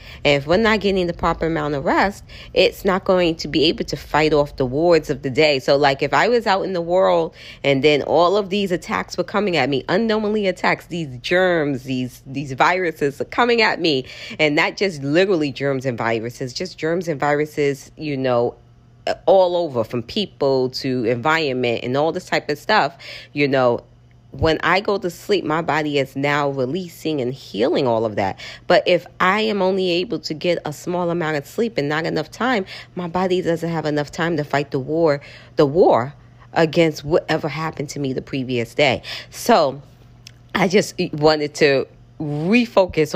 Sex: female